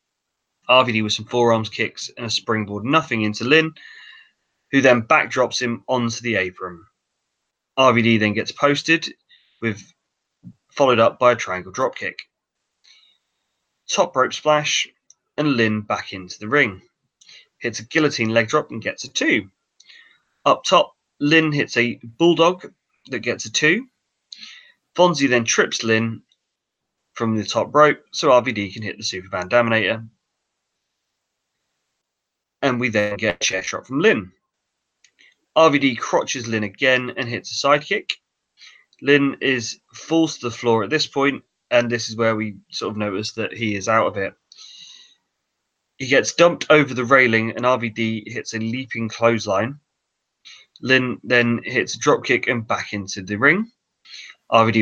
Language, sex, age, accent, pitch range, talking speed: English, male, 20-39, British, 110-145 Hz, 150 wpm